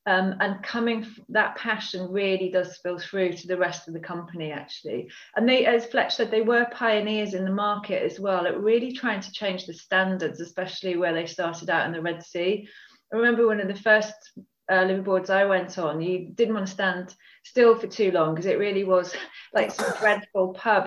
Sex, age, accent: female, 30-49, British